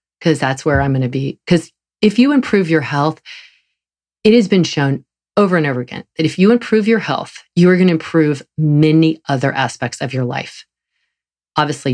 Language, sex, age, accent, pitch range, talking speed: English, female, 40-59, American, 140-175 Hz, 195 wpm